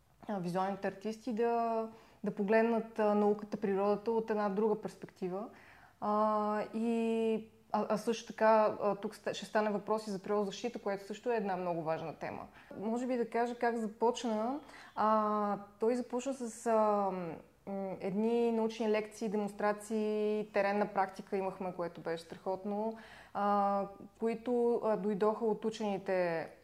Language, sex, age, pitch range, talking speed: Bulgarian, female, 20-39, 200-230 Hz, 130 wpm